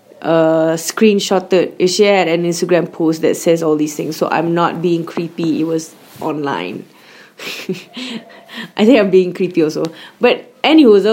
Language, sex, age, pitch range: English, female, 20-39, 165-190 Hz